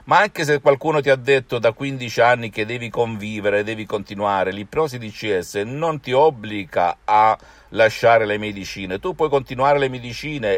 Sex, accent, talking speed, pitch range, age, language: male, native, 170 wpm, 100-140 Hz, 50-69, Italian